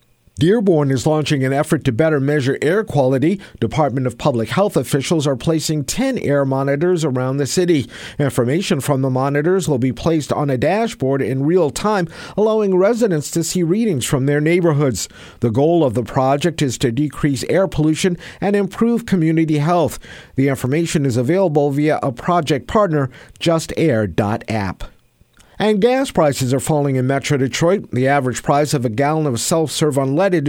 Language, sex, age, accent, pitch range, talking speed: English, male, 50-69, American, 135-175 Hz, 165 wpm